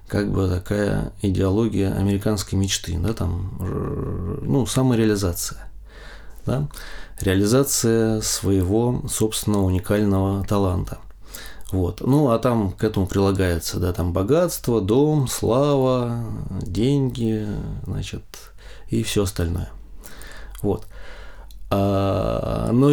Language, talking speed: Russian, 90 wpm